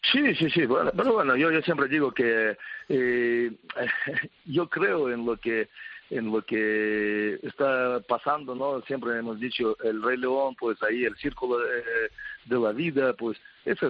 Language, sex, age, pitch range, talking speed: Spanish, male, 50-69, 105-125 Hz, 150 wpm